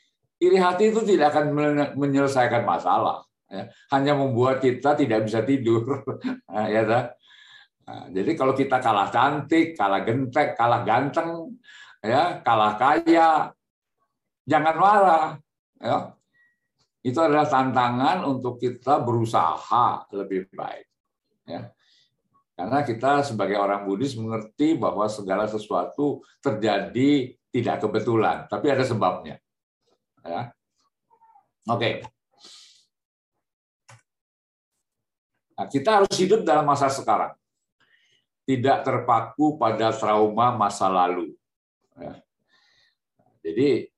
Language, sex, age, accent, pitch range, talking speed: Indonesian, male, 50-69, native, 120-170 Hz, 90 wpm